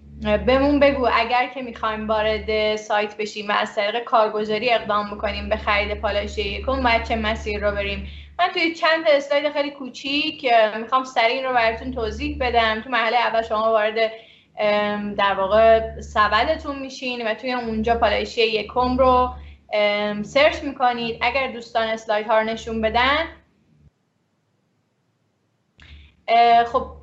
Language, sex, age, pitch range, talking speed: Persian, female, 10-29, 210-260 Hz, 135 wpm